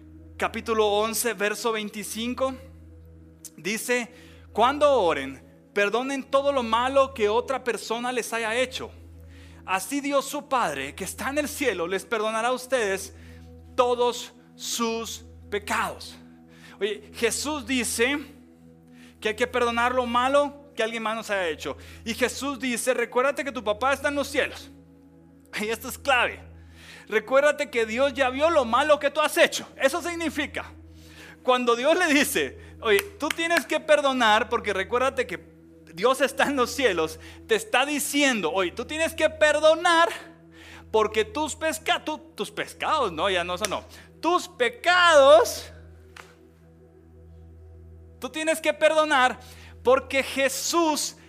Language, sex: Spanish, male